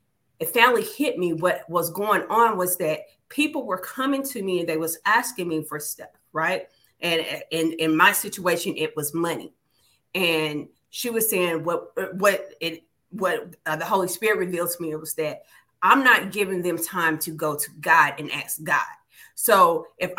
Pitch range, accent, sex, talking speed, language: 170-225 Hz, American, female, 190 wpm, English